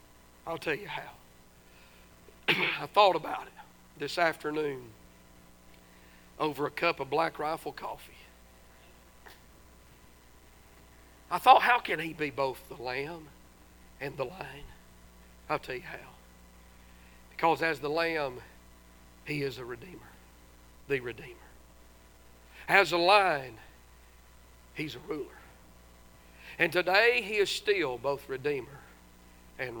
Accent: American